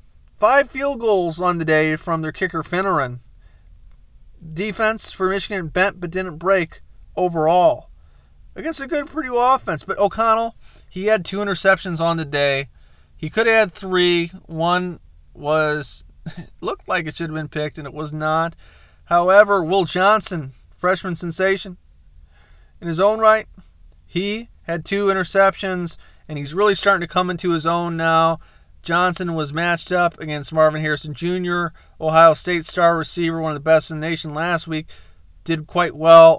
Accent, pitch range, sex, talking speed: American, 155-185 Hz, male, 160 wpm